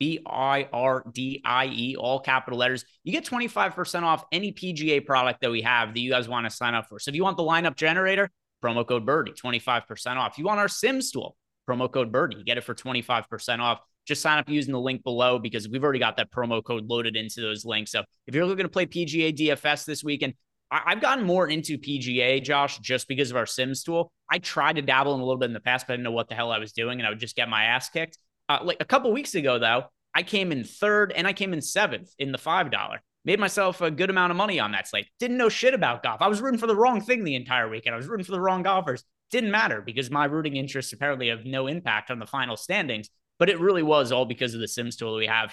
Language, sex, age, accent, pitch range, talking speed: English, male, 30-49, American, 120-170 Hz, 260 wpm